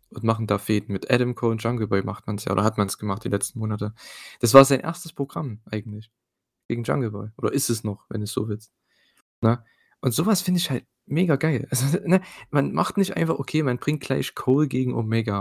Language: German